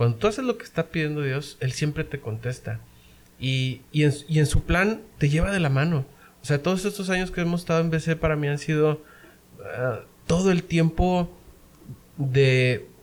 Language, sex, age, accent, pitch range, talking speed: Spanish, male, 40-59, Mexican, 125-175 Hz, 200 wpm